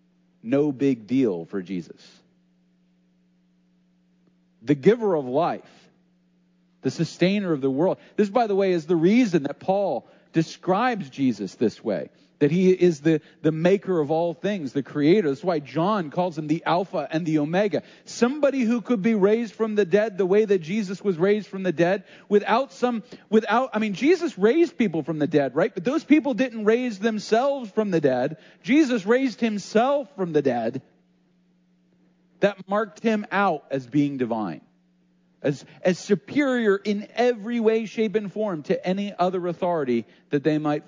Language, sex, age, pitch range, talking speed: English, male, 40-59, 160-230 Hz, 170 wpm